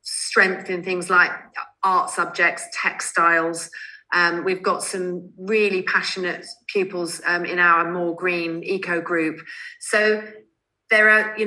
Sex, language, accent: female, English, British